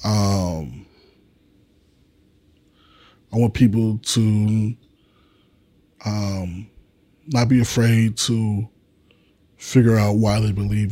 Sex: male